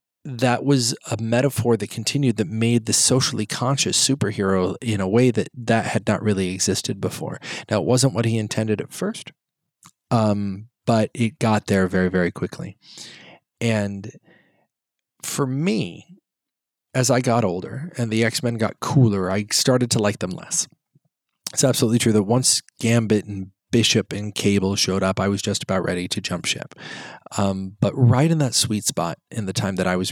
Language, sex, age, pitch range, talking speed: English, male, 30-49, 95-125 Hz, 175 wpm